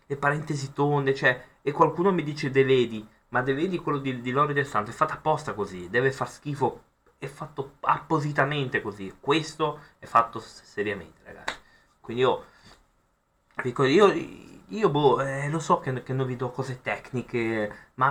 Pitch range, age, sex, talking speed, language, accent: 110-135 Hz, 20-39, male, 165 wpm, Italian, native